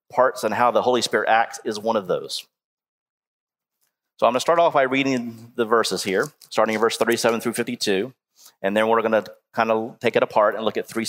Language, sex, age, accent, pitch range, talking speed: English, male, 30-49, American, 110-140 Hz, 220 wpm